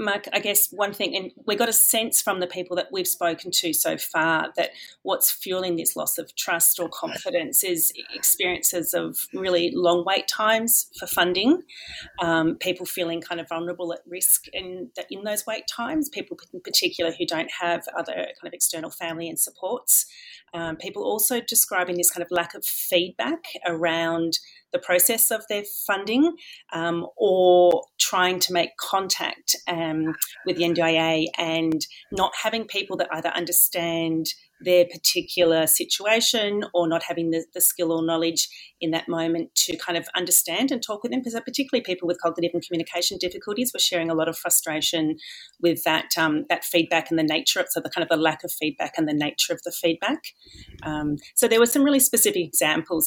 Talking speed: 185 wpm